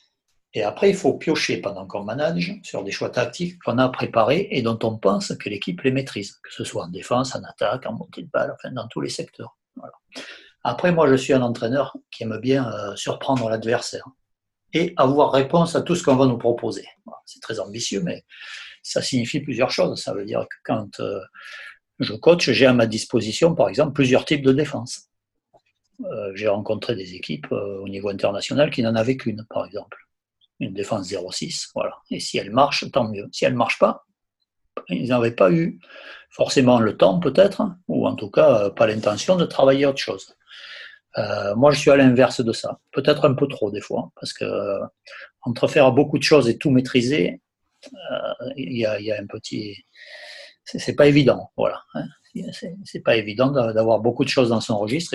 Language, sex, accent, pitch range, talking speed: French, male, French, 115-150 Hz, 200 wpm